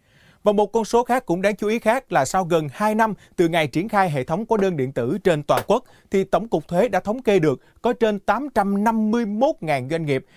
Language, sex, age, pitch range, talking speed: Vietnamese, male, 30-49, 150-210 Hz, 235 wpm